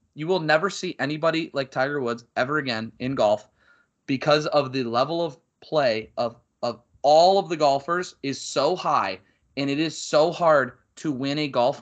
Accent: American